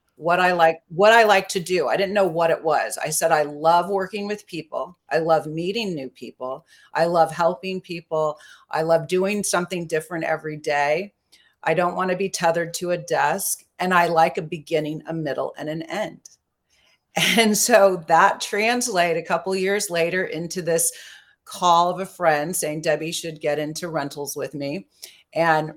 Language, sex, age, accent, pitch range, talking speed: English, female, 40-59, American, 155-190 Hz, 185 wpm